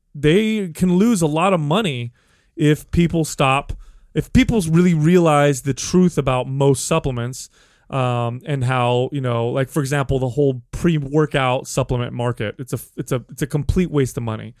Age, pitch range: 30-49, 125-160 Hz